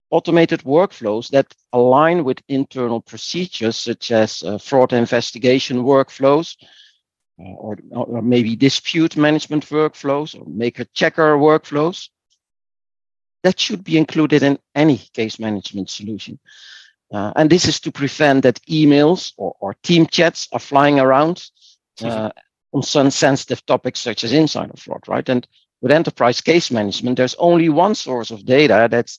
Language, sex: English, male